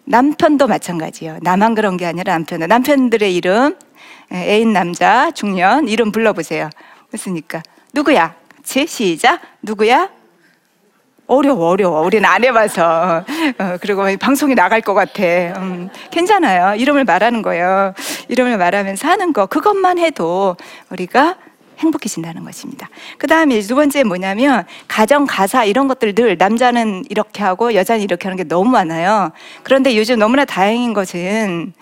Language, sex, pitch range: Korean, female, 190-285 Hz